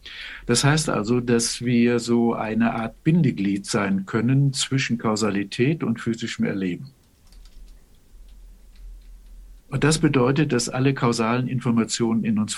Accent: German